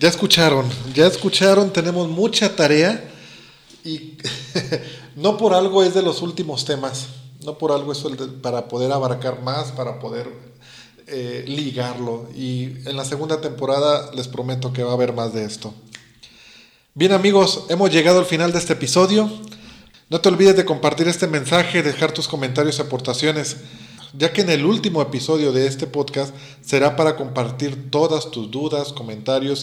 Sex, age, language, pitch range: male, 40-59, Spanish, 125-160 Hz